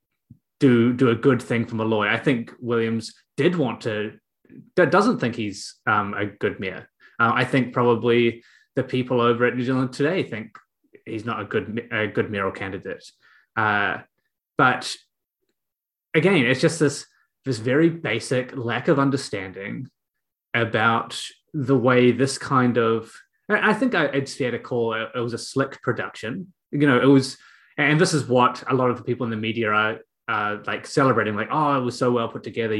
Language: English